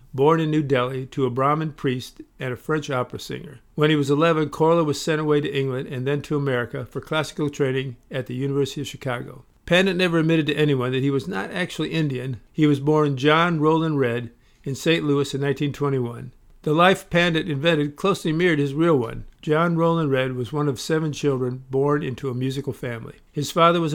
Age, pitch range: 50-69, 135-155 Hz